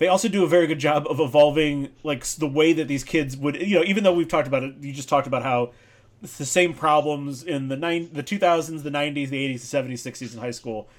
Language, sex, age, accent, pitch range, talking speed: English, male, 30-49, American, 130-170 Hz, 270 wpm